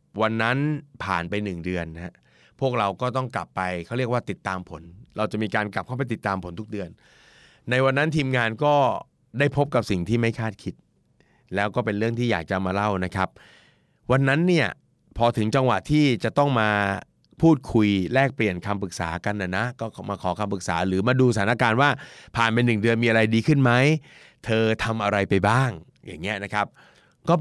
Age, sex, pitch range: 30-49, male, 100-125 Hz